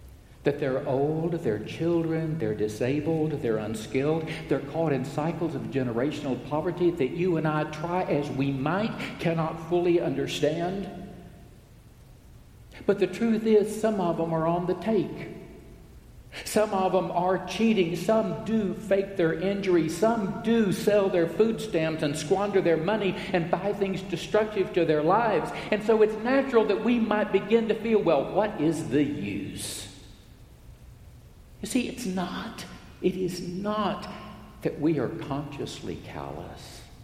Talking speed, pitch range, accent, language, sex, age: 150 wpm, 115-185 Hz, American, English, male, 60-79